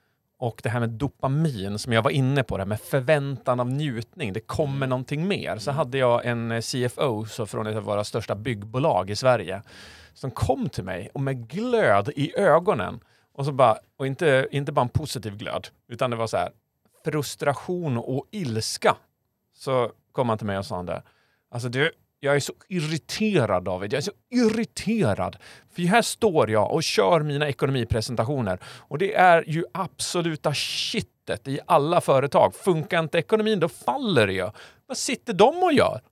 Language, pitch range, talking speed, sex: Swedish, 115-175 Hz, 180 wpm, male